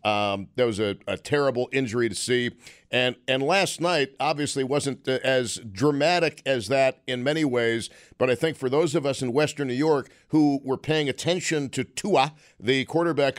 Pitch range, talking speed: 125-150 Hz, 185 wpm